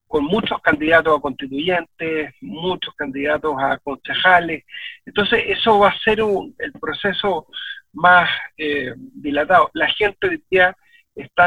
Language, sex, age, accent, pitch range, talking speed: Spanish, male, 40-59, Argentinian, 145-200 Hz, 125 wpm